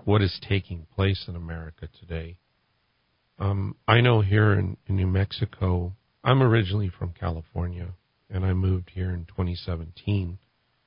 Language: English